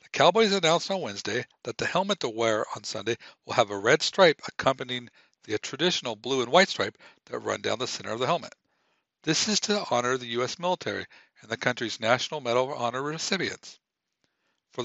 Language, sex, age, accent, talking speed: English, male, 60-79, American, 190 wpm